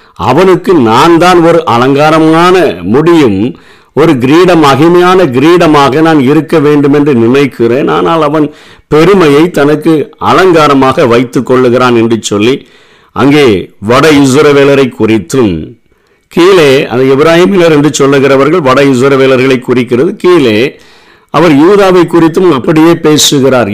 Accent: native